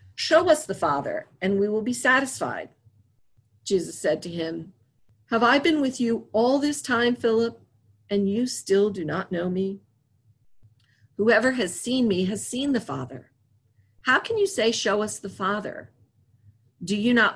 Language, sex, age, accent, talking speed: English, female, 50-69, American, 165 wpm